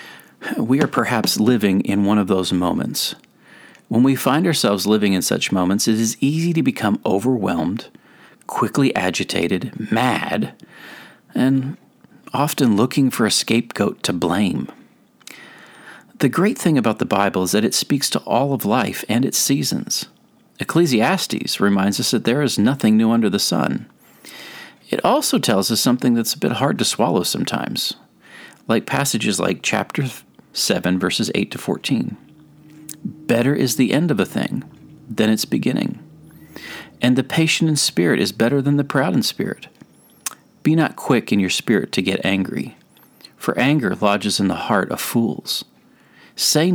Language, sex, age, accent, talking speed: English, male, 40-59, American, 160 wpm